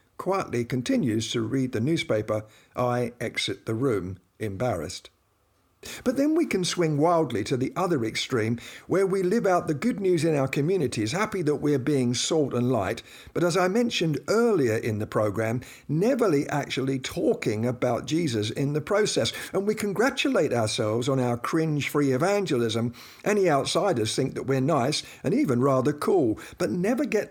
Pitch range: 125-175 Hz